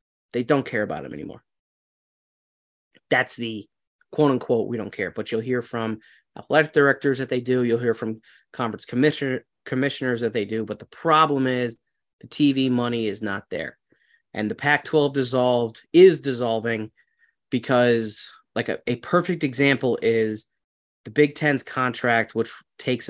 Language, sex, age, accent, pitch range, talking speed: English, male, 30-49, American, 115-140 Hz, 150 wpm